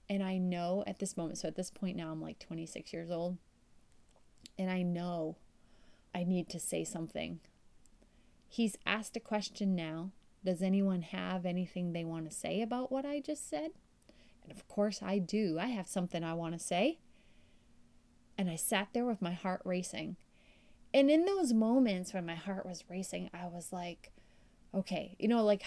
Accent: American